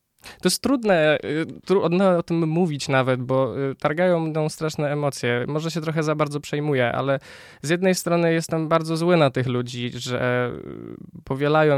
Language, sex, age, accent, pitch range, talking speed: Polish, male, 20-39, native, 120-150 Hz, 155 wpm